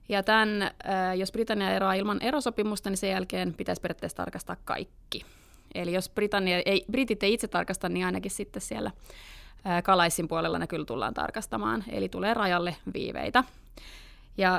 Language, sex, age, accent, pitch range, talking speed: Finnish, female, 30-49, native, 180-205 Hz, 150 wpm